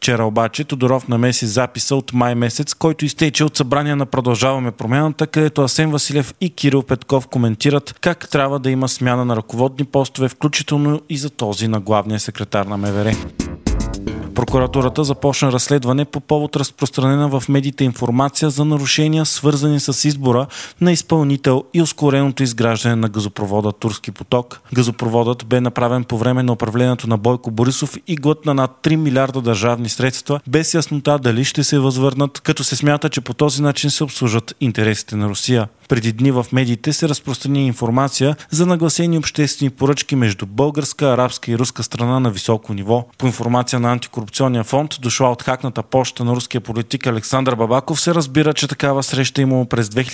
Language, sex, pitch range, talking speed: Bulgarian, male, 120-145 Hz, 165 wpm